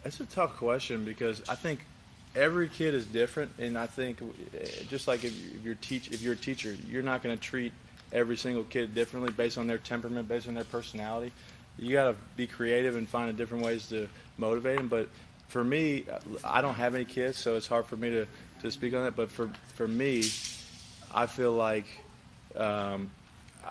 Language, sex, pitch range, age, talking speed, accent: English, male, 110-125 Hz, 20-39, 195 wpm, American